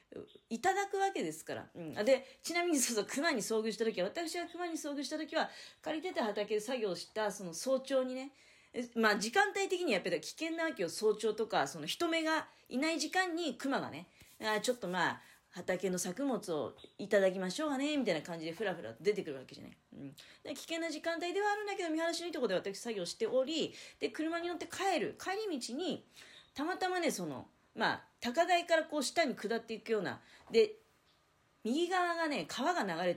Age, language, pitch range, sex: 40-59, Japanese, 210-340 Hz, female